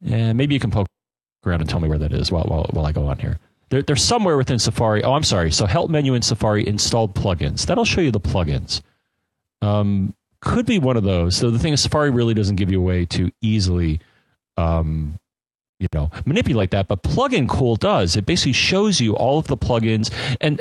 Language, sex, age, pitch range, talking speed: English, male, 40-59, 95-125 Hz, 220 wpm